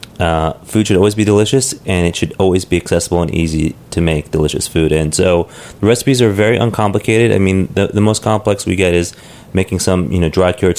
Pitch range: 80-100 Hz